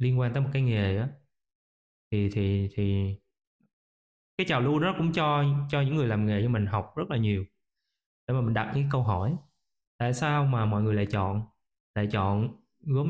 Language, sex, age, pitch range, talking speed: Vietnamese, male, 20-39, 110-145 Hz, 200 wpm